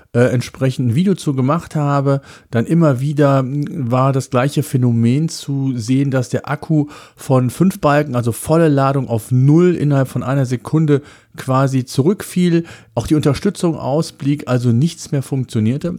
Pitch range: 115-140 Hz